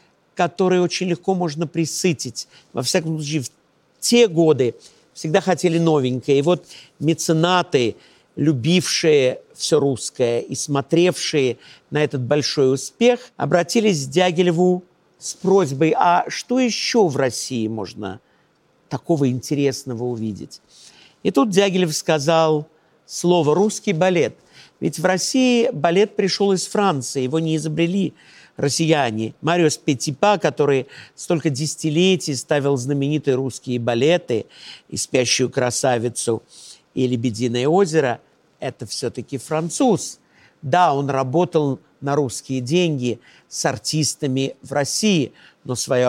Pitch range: 130-175 Hz